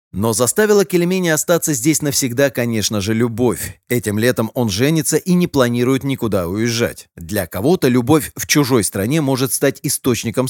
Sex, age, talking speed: male, 30-49, 155 wpm